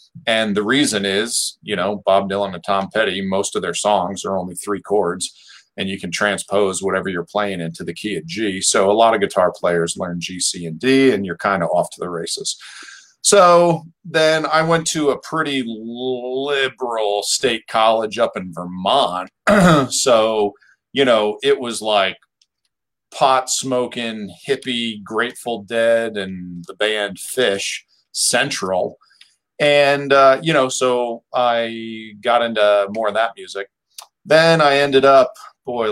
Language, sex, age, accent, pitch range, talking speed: English, male, 40-59, American, 100-135 Hz, 160 wpm